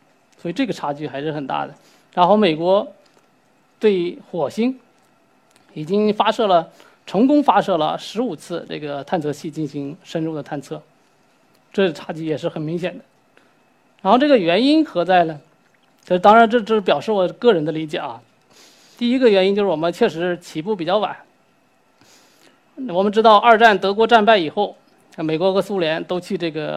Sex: male